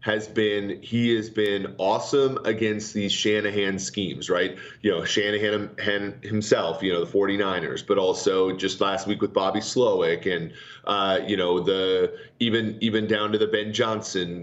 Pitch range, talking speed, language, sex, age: 105-130 Hz, 160 wpm, English, male, 30-49